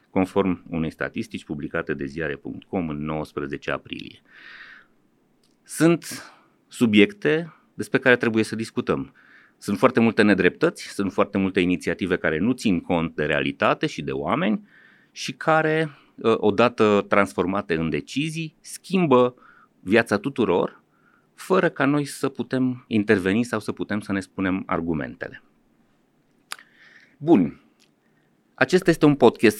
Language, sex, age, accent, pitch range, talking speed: Romanian, male, 30-49, native, 95-130 Hz, 120 wpm